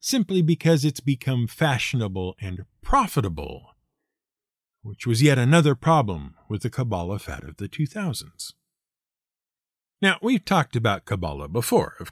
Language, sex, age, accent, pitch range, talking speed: English, male, 50-69, American, 110-185 Hz, 130 wpm